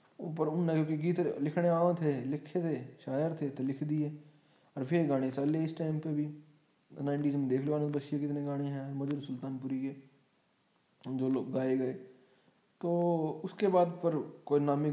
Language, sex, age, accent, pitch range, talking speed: Hindi, male, 20-39, native, 130-160 Hz, 175 wpm